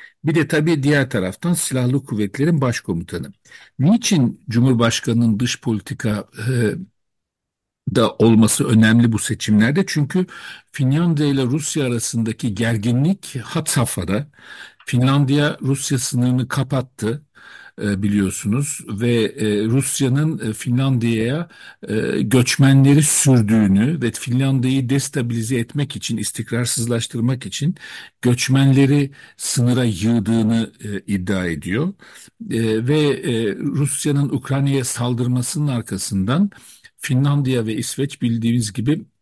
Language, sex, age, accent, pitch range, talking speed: Turkish, male, 50-69, native, 110-140 Hz, 100 wpm